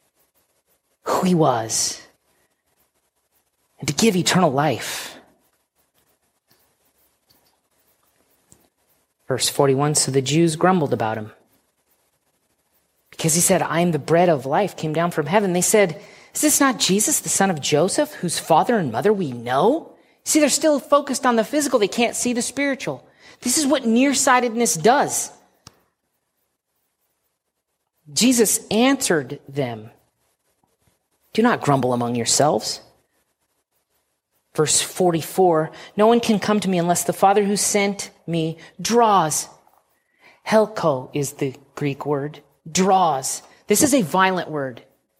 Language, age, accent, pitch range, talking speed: English, 40-59, American, 155-230 Hz, 125 wpm